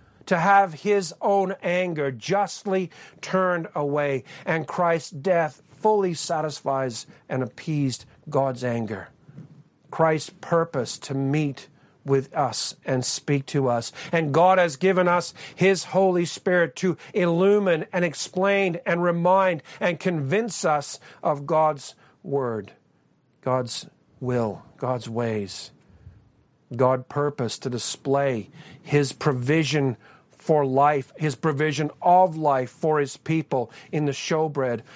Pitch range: 135-175 Hz